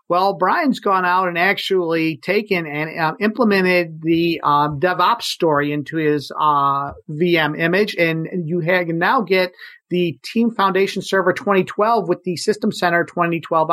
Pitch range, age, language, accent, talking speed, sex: 165-200 Hz, 50-69, English, American, 150 wpm, male